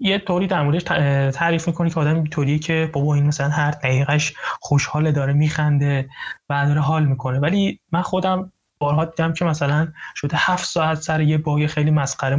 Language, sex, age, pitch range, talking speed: Persian, male, 20-39, 145-170 Hz, 185 wpm